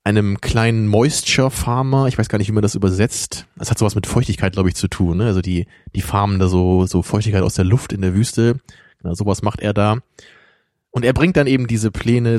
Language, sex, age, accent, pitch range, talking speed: German, male, 20-39, German, 100-120 Hz, 230 wpm